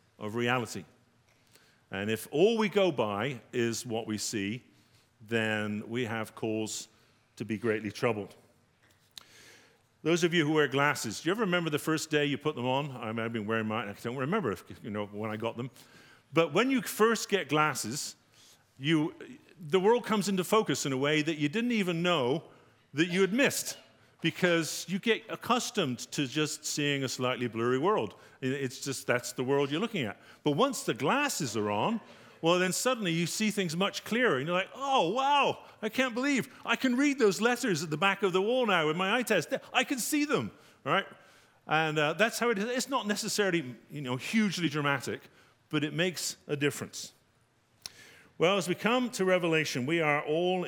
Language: English